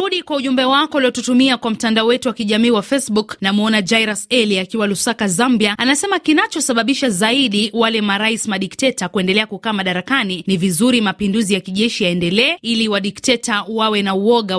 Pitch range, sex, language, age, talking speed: 200-265 Hz, female, Swahili, 30-49, 155 wpm